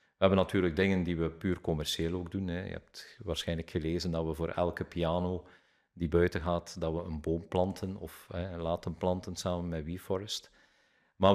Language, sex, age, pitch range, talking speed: Dutch, male, 40-59, 85-100 Hz, 180 wpm